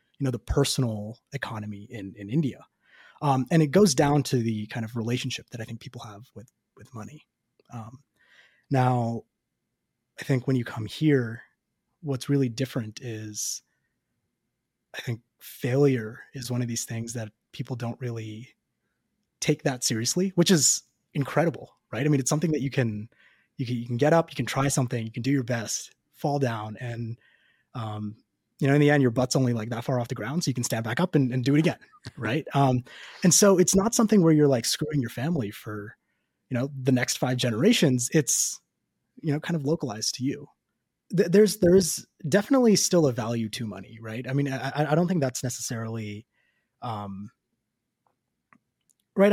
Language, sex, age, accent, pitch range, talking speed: English, male, 20-39, American, 115-150 Hz, 190 wpm